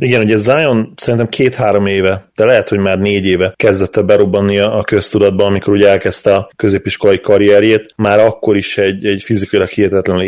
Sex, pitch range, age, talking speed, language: male, 95-110 Hz, 30-49, 170 wpm, Hungarian